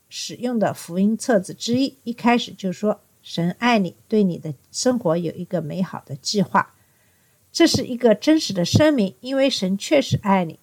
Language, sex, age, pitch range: Chinese, female, 50-69, 170-250 Hz